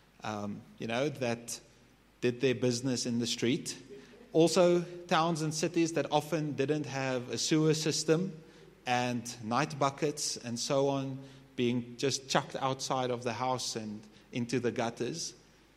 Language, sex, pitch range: English, male, 120-155 Hz